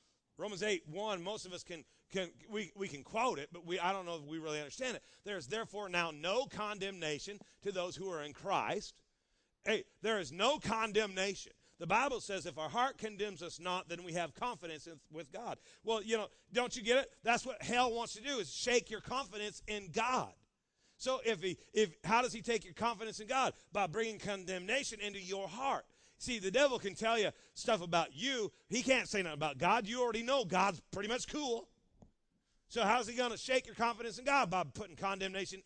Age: 40-59